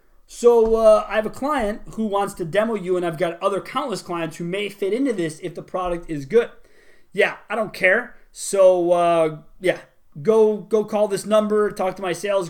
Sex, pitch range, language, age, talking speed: male, 165-220 Hz, English, 30-49, 205 wpm